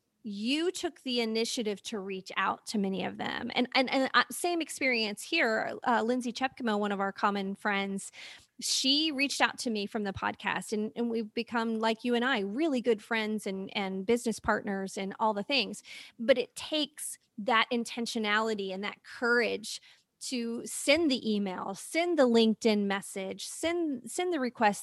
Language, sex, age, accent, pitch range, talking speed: English, female, 30-49, American, 215-260 Hz, 175 wpm